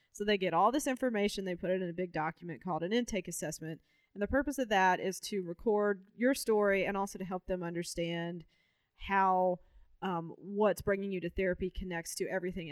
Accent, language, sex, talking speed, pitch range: American, English, female, 205 wpm, 170-205 Hz